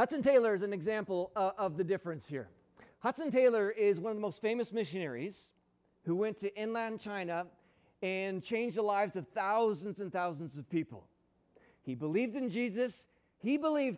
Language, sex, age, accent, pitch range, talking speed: English, male, 40-59, American, 160-205 Hz, 170 wpm